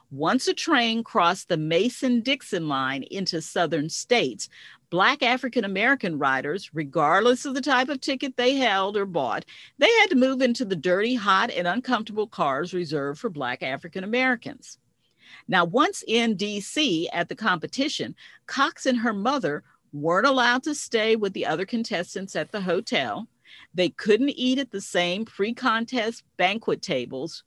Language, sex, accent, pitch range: English, female, American, 170-245 Hz